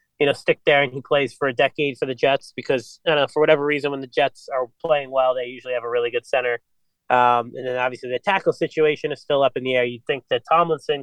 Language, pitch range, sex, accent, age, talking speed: English, 130-165 Hz, male, American, 30-49, 270 wpm